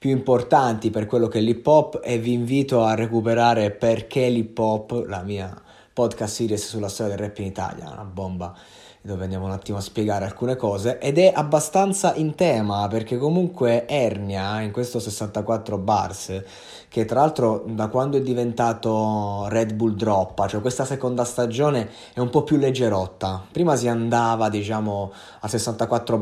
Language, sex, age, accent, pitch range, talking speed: Italian, male, 20-39, native, 110-130 Hz, 165 wpm